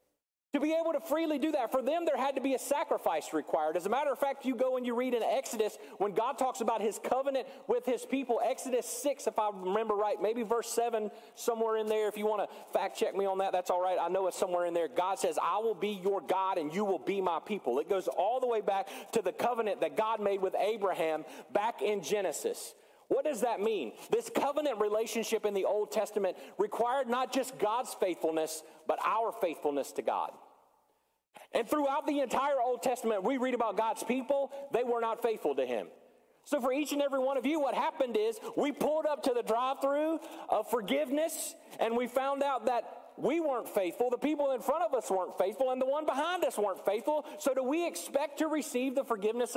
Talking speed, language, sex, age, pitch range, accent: 225 wpm, English, male, 40-59, 215-290 Hz, American